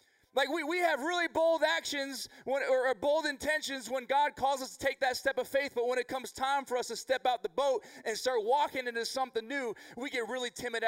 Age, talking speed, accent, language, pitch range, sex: 20-39, 235 wpm, American, English, 230-300 Hz, male